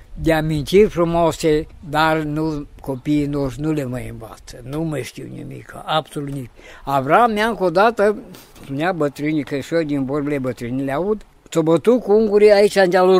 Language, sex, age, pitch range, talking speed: English, female, 60-79, 140-190 Hz, 160 wpm